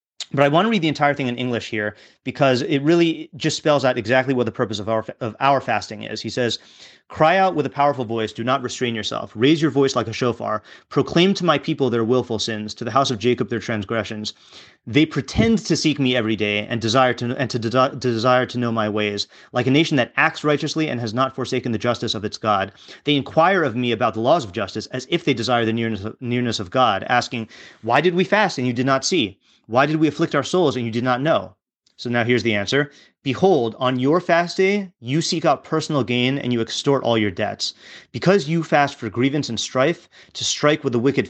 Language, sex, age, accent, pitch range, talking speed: English, male, 30-49, American, 115-150 Hz, 240 wpm